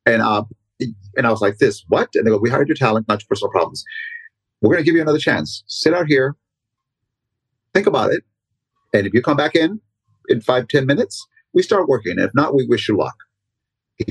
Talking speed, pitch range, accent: 220 wpm, 110-135 Hz, American